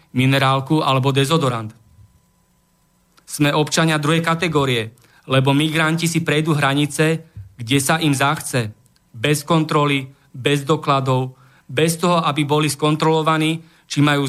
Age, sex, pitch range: 40-59, male, 140-165 Hz